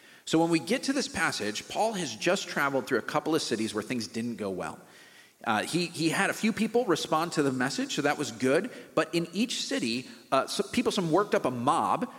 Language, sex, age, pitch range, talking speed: English, male, 40-59, 135-185 Hz, 235 wpm